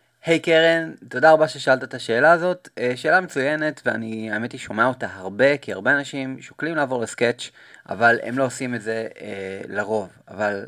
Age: 20-39